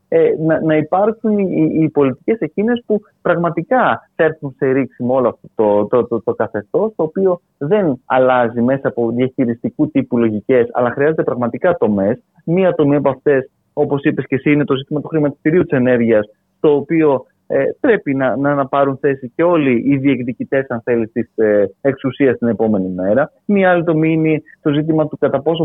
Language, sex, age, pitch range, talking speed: Greek, male, 30-49, 125-155 Hz, 180 wpm